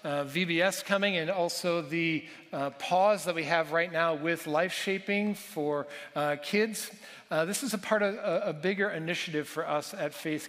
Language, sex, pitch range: English, male, 160-195 Hz